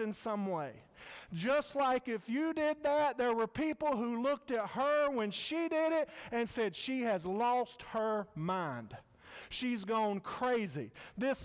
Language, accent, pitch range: English, American, 225-275 Hz